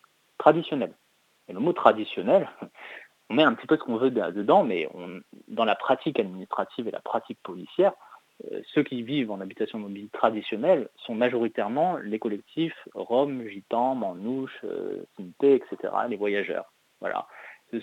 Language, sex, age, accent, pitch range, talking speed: French, male, 30-49, French, 110-135 Hz, 150 wpm